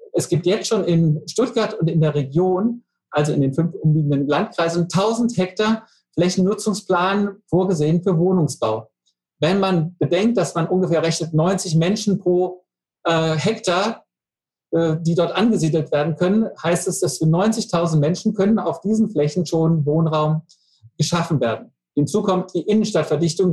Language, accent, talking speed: German, German, 150 wpm